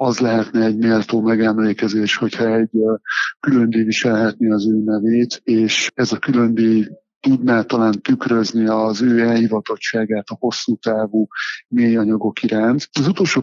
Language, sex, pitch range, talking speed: Hungarian, male, 110-120 Hz, 135 wpm